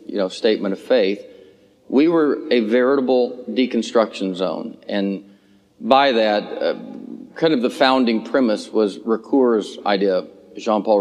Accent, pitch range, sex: American, 105-120 Hz, male